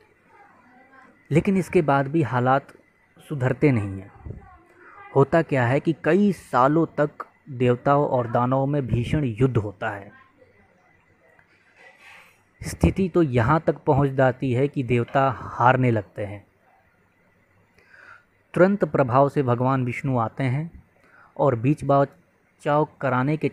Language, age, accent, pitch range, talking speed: Hindi, 20-39, native, 120-150 Hz, 120 wpm